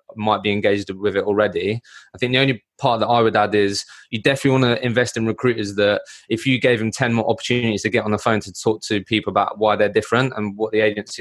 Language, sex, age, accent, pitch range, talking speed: English, male, 20-39, British, 105-115 Hz, 255 wpm